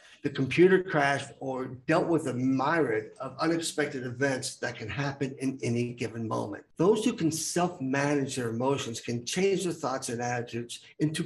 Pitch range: 125-155 Hz